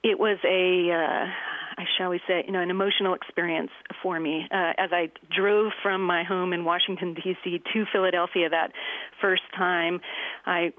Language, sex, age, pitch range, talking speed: English, female, 40-59, 175-195 Hz, 165 wpm